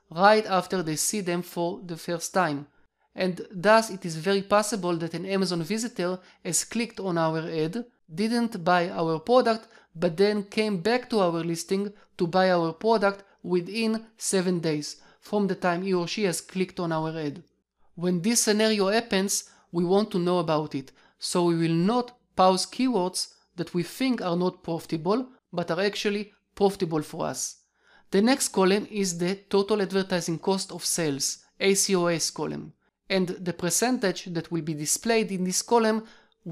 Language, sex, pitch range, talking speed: English, male, 170-205 Hz, 170 wpm